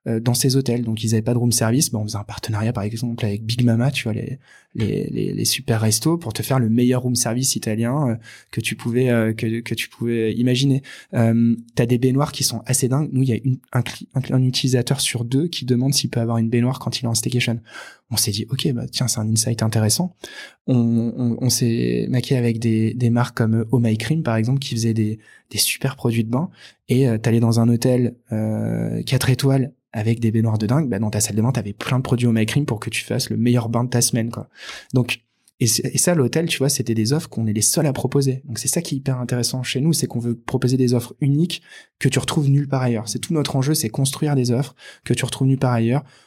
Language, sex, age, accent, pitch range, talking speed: French, male, 20-39, French, 115-135 Hz, 260 wpm